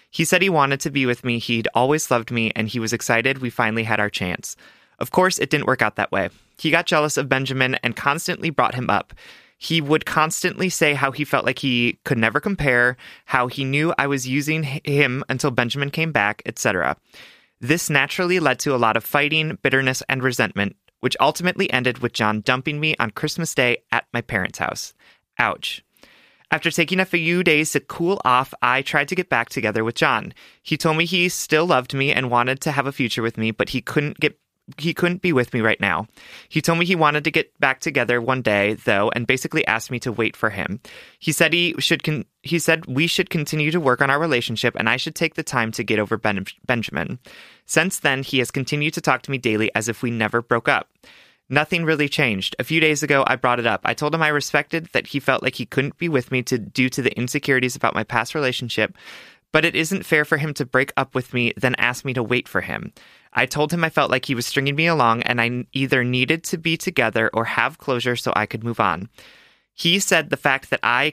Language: English